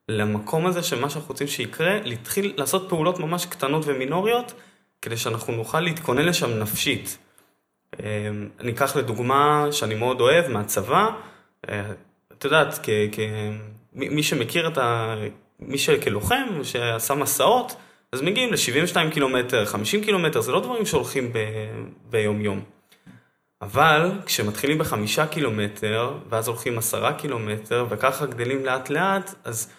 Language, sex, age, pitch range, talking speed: Hebrew, male, 20-39, 115-180 Hz, 125 wpm